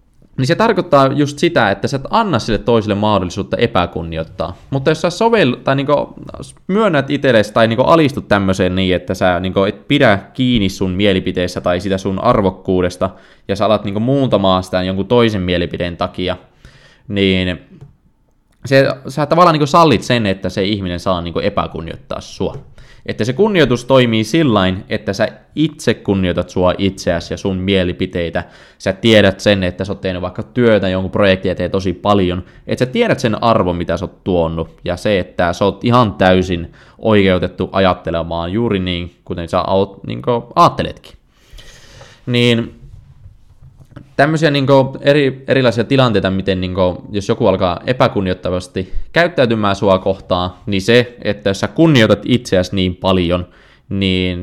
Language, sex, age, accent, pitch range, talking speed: Finnish, male, 20-39, native, 90-125 Hz, 160 wpm